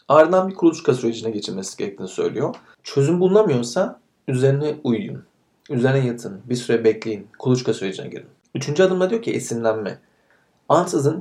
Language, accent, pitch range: Turkish, native, 120-155 Hz